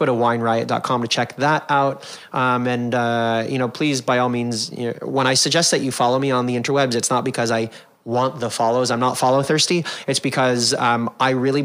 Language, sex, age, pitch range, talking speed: English, male, 30-49, 115-140 Hz, 225 wpm